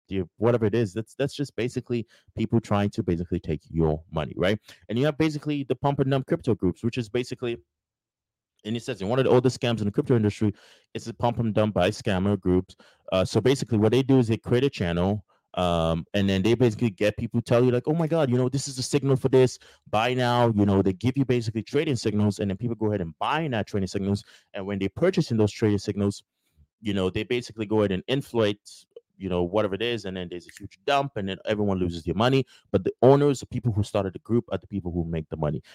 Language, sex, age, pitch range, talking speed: English, male, 30-49, 95-125 Hz, 255 wpm